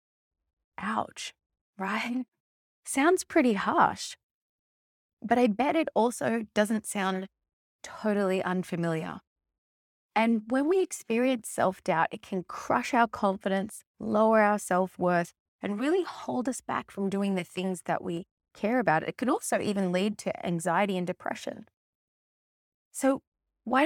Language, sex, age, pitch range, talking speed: English, female, 20-39, 170-220 Hz, 130 wpm